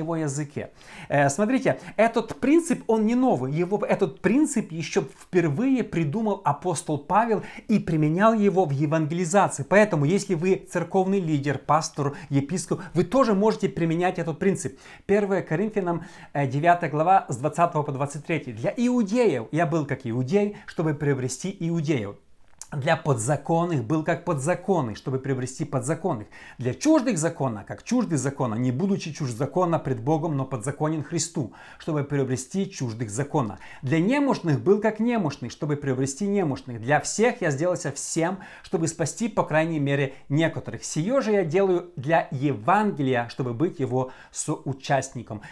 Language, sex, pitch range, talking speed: Russian, male, 145-190 Hz, 140 wpm